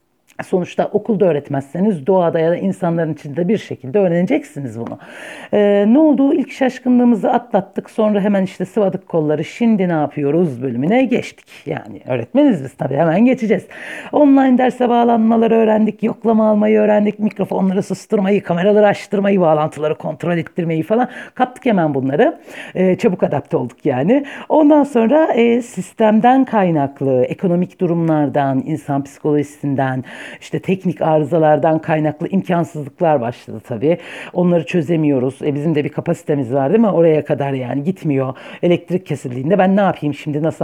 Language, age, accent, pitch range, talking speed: Turkish, 60-79, native, 155-225 Hz, 140 wpm